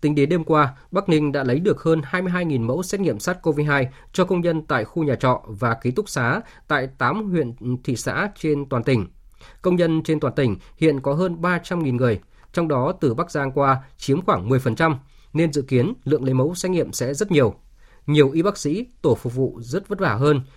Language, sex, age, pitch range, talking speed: Vietnamese, male, 20-39, 125-160 Hz, 220 wpm